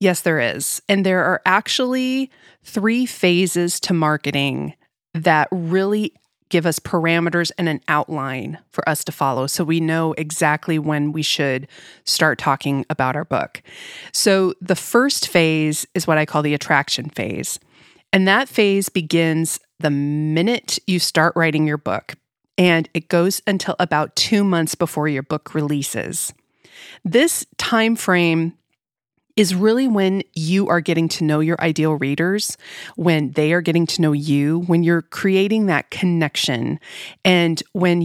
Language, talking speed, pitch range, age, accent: English, 150 wpm, 155-190 Hz, 30-49, American